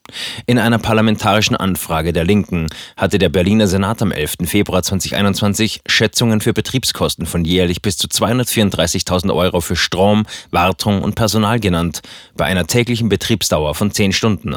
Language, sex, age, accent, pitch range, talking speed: German, male, 30-49, German, 90-110 Hz, 150 wpm